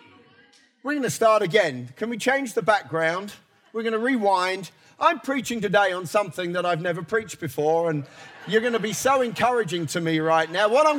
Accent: British